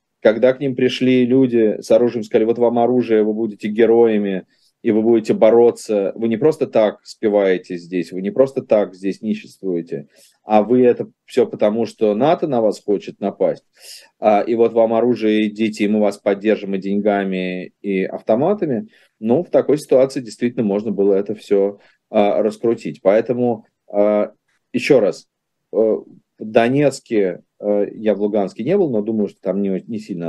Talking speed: 160 wpm